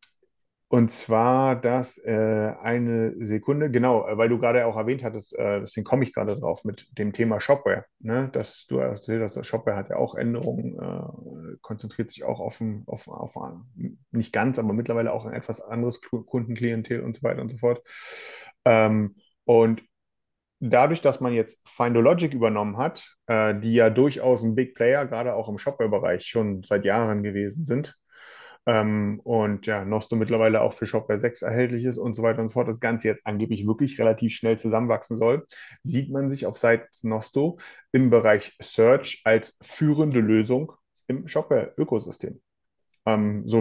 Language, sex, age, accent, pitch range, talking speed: German, male, 30-49, German, 110-125 Hz, 170 wpm